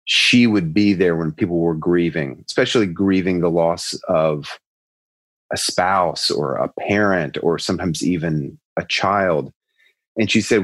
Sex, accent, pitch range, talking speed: male, American, 85-110 Hz, 145 wpm